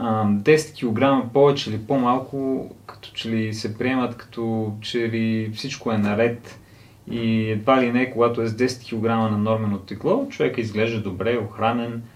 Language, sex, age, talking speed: Bulgarian, male, 30-49, 160 wpm